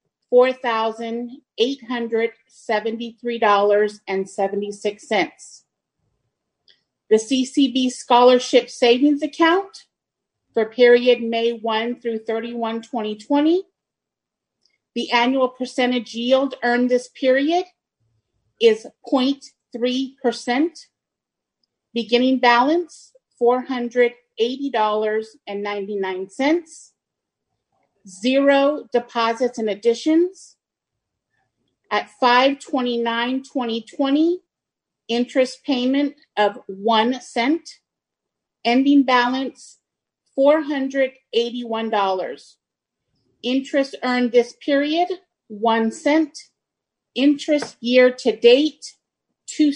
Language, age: English, 40-59